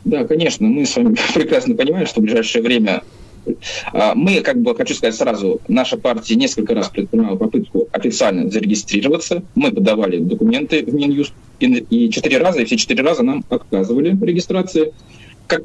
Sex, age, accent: male, 20-39, native